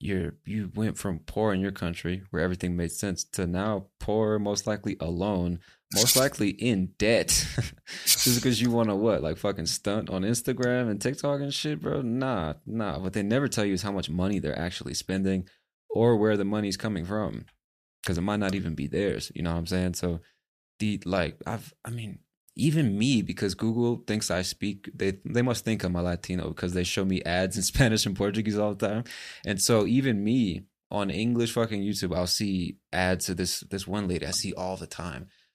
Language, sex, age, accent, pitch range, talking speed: English, male, 20-39, American, 90-110 Hz, 210 wpm